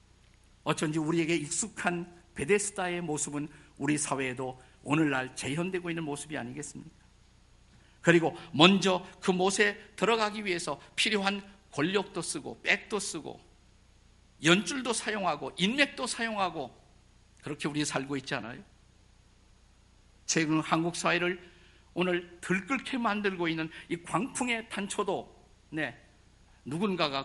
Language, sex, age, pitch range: Korean, male, 50-69, 120-185 Hz